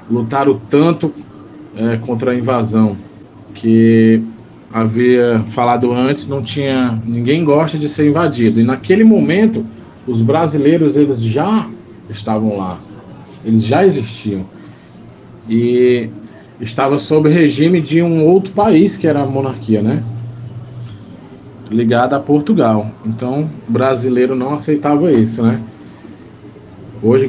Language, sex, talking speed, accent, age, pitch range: Portuguese, male, 115 wpm, Brazilian, 20-39, 115-150 Hz